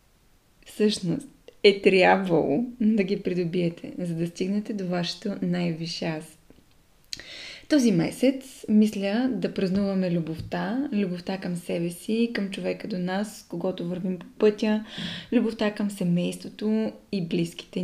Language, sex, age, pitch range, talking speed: Bulgarian, female, 20-39, 185-220 Hz, 120 wpm